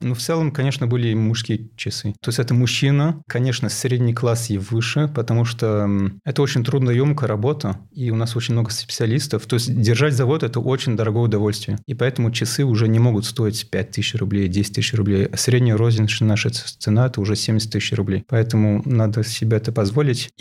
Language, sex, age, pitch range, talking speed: Russian, male, 30-49, 110-125 Hz, 195 wpm